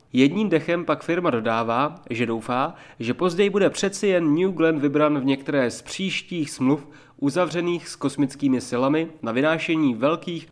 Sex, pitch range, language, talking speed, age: male, 135-175 Hz, Czech, 155 wpm, 30-49